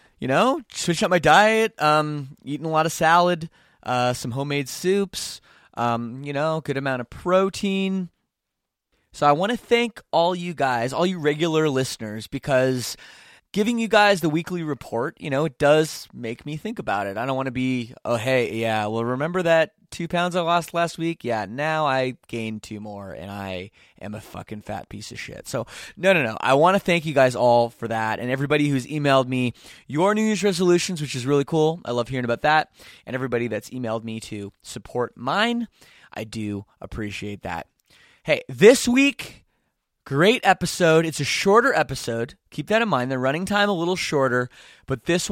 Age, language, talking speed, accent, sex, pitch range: 20-39, English, 195 wpm, American, male, 120-175 Hz